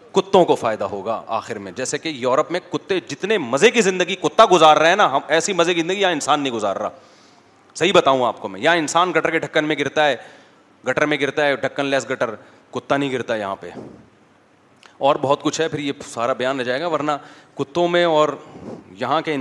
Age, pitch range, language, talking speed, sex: 30-49, 130-160 Hz, Urdu, 220 wpm, male